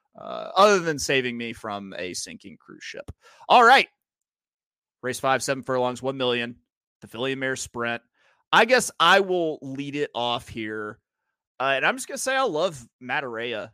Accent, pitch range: American, 120-160 Hz